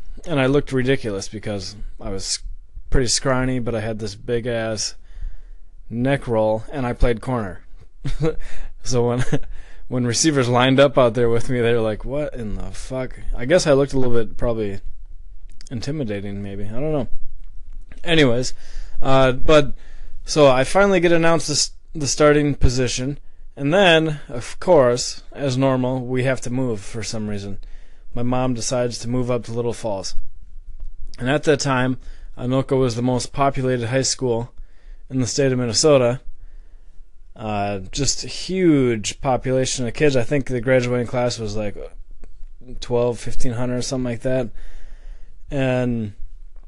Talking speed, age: 155 wpm, 20-39